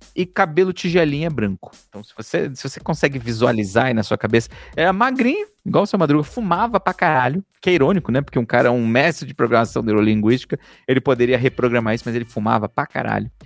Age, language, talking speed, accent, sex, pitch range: 40-59, Portuguese, 200 wpm, Brazilian, male, 130-195 Hz